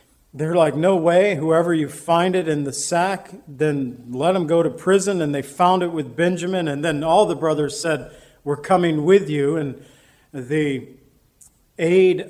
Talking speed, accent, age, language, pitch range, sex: 175 wpm, American, 50-69, English, 145-175 Hz, male